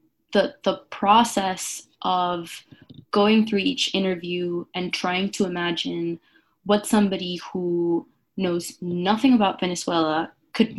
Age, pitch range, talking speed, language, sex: 20-39, 175-210 Hz, 110 wpm, English, female